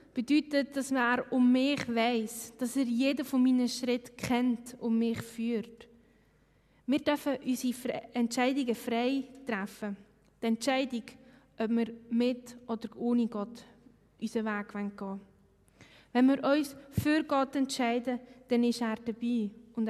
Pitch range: 220-255 Hz